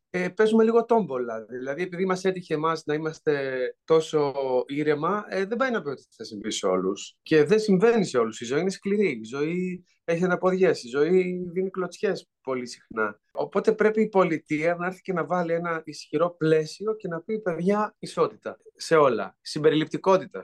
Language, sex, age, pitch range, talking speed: Greek, male, 30-49, 135-185 Hz, 175 wpm